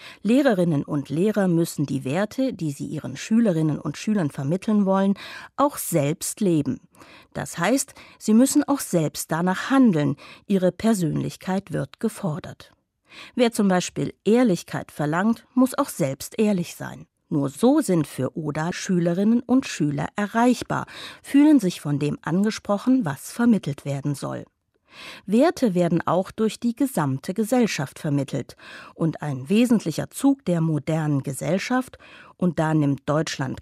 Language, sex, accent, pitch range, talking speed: German, female, German, 155-225 Hz, 135 wpm